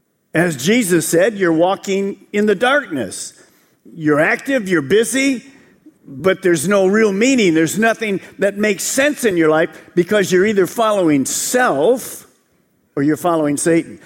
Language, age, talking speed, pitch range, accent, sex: English, 50-69, 145 wpm, 165-220 Hz, American, male